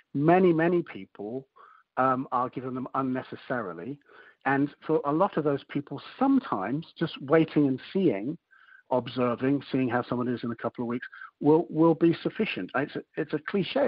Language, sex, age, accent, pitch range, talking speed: English, male, 60-79, British, 120-155 Hz, 170 wpm